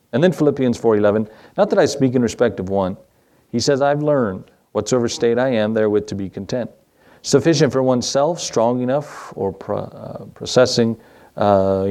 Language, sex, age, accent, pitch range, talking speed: English, male, 40-59, American, 105-130 Hz, 160 wpm